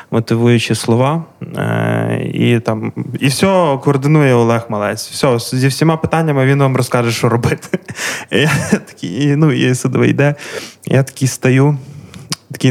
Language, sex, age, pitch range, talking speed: Ukrainian, male, 20-39, 115-135 Hz, 125 wpm